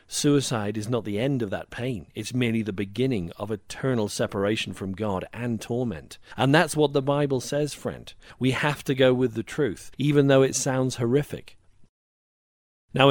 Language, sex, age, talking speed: English, male, 40-59, 180 wpm